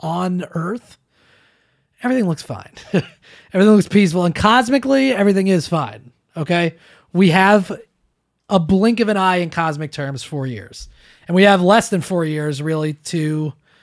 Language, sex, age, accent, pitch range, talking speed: English, male, 30-49, American, 140-185 Hz, 150 wpm